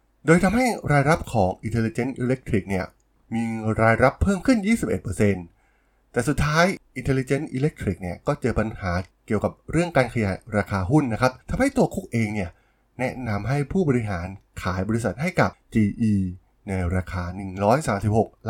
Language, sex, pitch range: Thai, male, 100-135 Hz